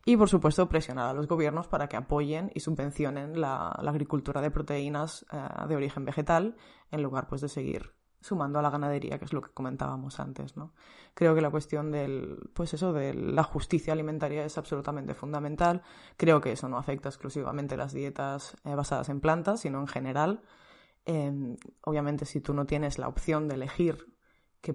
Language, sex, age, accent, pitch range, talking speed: Spanish, female, 20-39, Spanish, 140-160 Hz, 185 wpm